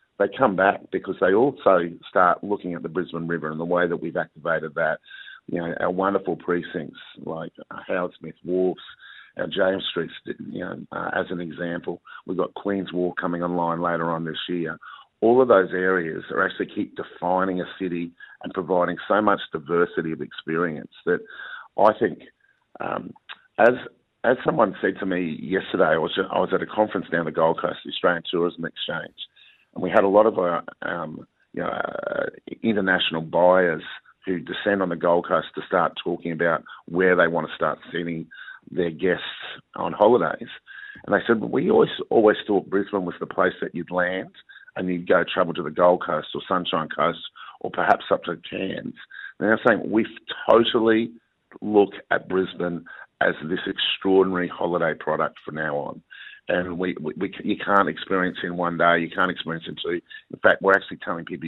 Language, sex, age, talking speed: English, male, 50-69, 185 wpm